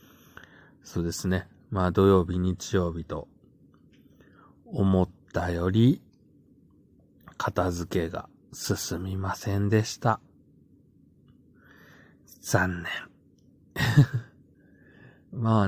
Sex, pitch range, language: male, 85-105 Hz, Japanese